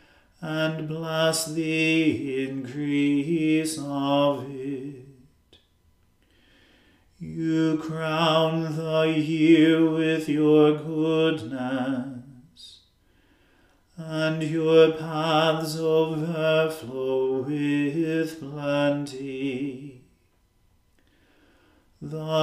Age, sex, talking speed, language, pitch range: 40-59, male, 55 wpm, English, 140-160 Hz